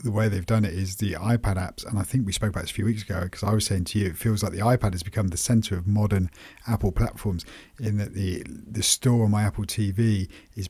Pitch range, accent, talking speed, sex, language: 95-115 Hz, British, 275 wpm, male, English